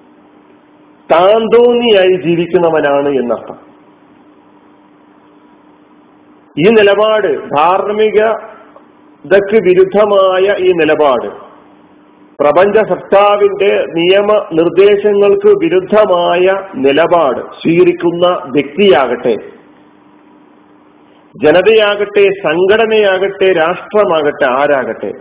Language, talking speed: Malayalam, 50 wpm